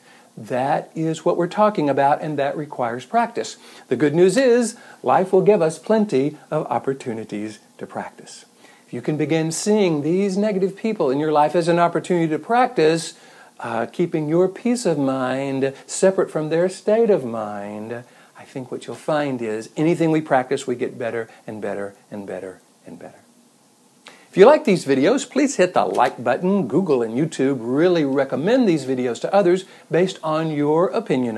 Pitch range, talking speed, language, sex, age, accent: 140-195 Hz, 175 wpm, English, male, 60-79, American